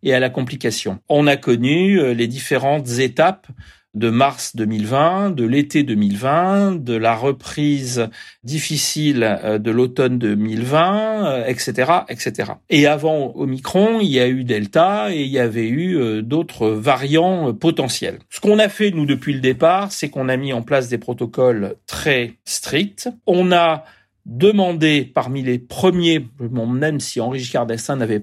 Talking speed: 150 wpm